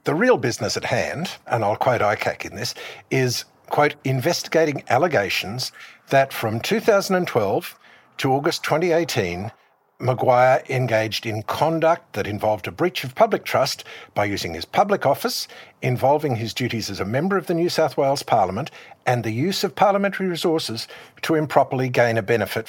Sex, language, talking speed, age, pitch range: male, English, 160 wpm, 60-79, 115-165 Hz